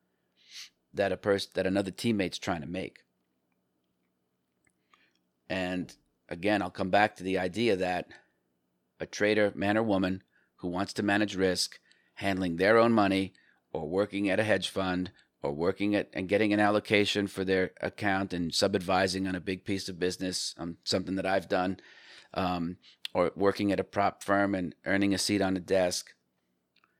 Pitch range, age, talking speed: 85-100 Hz, 40-59, 165 wpm